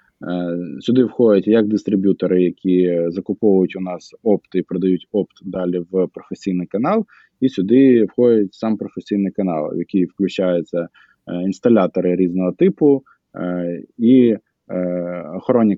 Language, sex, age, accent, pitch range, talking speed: Ukrainian, male, 20-39, native, 90-115 Hz, 115 wpm